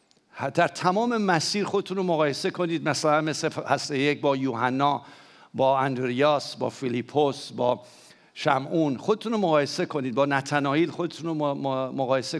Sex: male